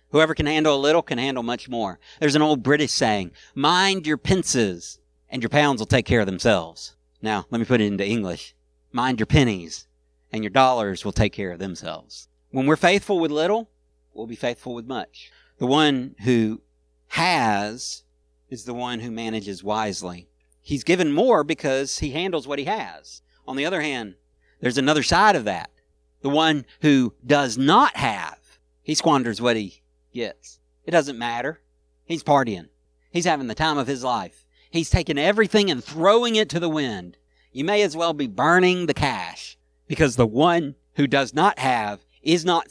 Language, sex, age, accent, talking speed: English, male, 50-69, American, 185 wpm